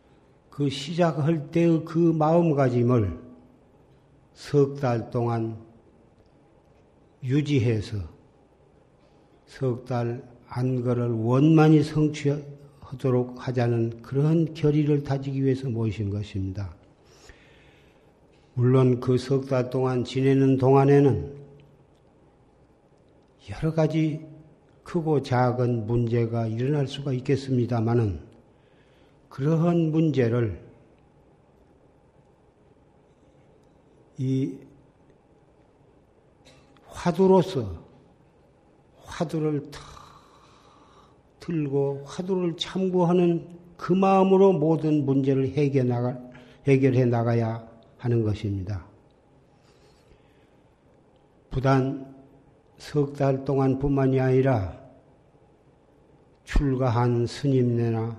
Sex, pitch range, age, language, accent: male, 120-145 Hz, 50-69, Korean, native